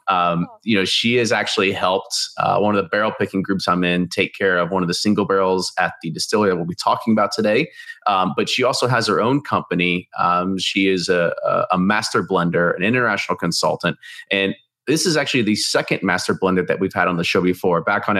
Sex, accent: male, American